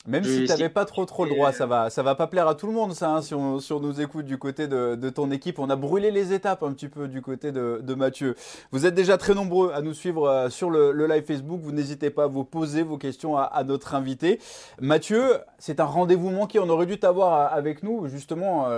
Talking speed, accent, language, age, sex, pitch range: 270 wpm, French, French, 20-39, male, 140-180 Hz